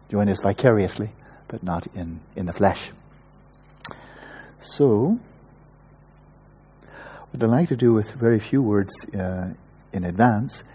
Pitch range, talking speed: 100-135 Hz, 125 wpm